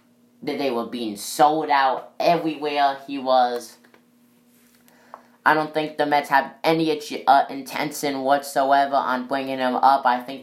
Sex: female